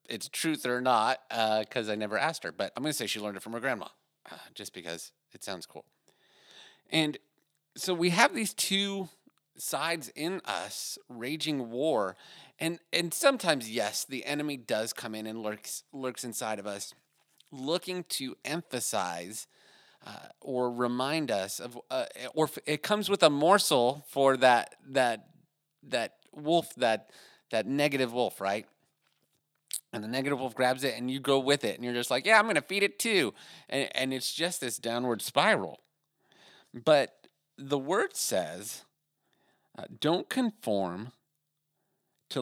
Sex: male